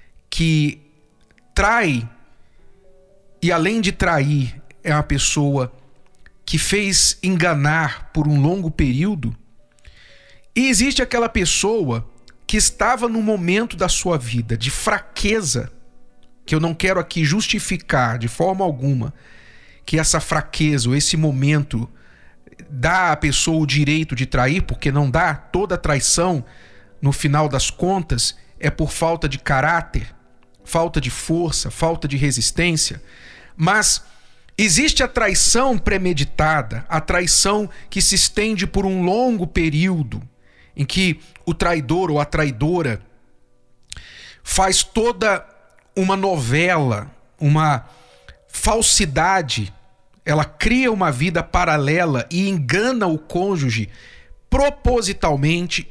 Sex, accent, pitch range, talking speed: male, Brazilian, 140-190 Hz, 115 wpm